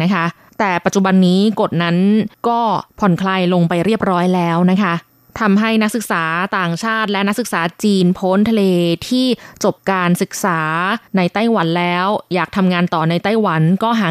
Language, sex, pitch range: Thai, female, 175-220 Hz